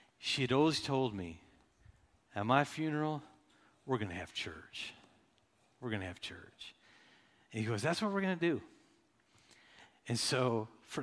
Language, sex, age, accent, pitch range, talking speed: English, male, 50-69, American, 110-155 Hz, 165 wpm